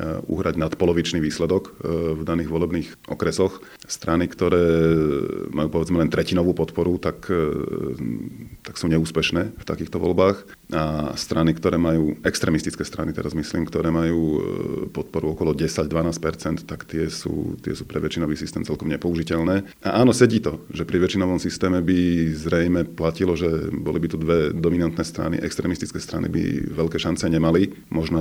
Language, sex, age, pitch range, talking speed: Slovak, male, 40-59, 80-90 Hz, 145 wpm